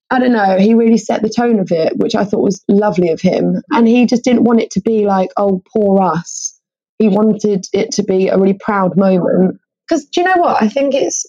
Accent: British